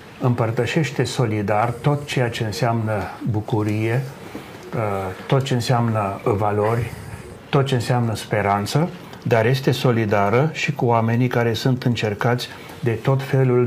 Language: Romanian